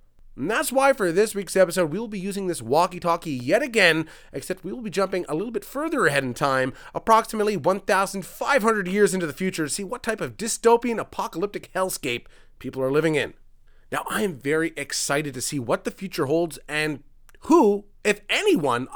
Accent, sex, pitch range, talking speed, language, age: American, male, 150-220 Hz, 190 wpm, English, 30-49